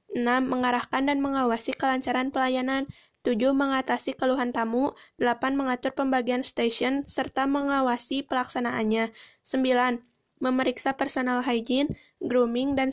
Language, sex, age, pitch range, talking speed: Indonesian, female, 10-29, 245-275 Hz, 105 wpm